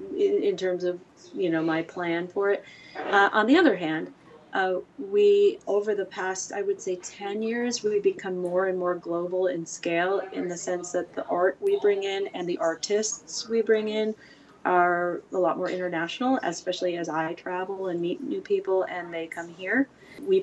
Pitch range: 170-200 Hz